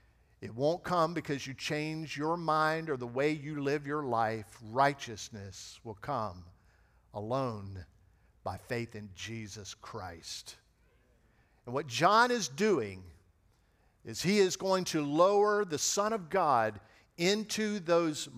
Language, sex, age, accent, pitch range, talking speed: English, male, 50-69, American, 110-155 Hz, 135 wpm